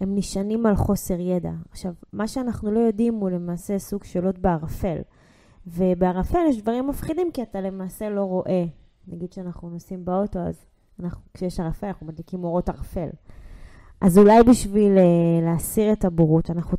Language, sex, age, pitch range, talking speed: Hebrew, female, 20-39, 180-245 Hz, 155 wpm